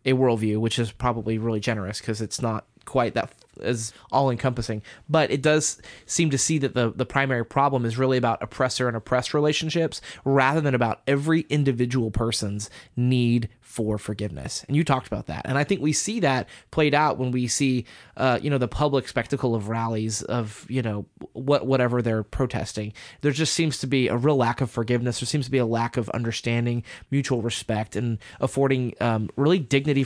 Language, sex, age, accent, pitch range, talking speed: English, male, 20-39, American, 115-140 Hz, 200 wpm